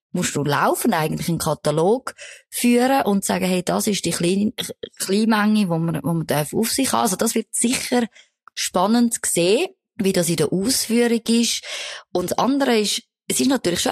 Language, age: German, 20-39